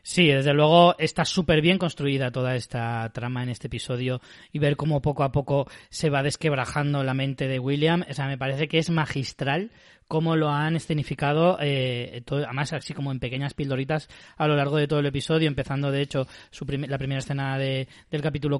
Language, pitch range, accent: Spanish, 140-170 Hz, Spanish